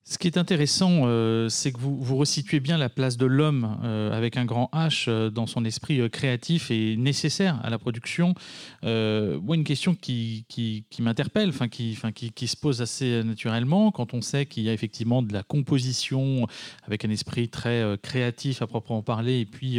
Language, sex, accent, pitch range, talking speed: French, male, French, 115-145 Hz, 205 wpm